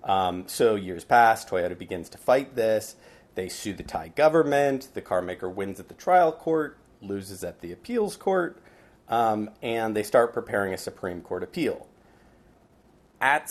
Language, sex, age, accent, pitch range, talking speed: English, male, 30-49, American, 95-115 Hz, 165 wpm